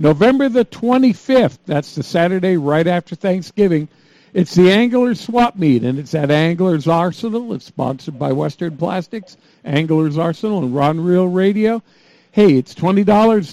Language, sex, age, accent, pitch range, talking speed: English, male, 50-69, American, 165-210 Hz, 145 wpm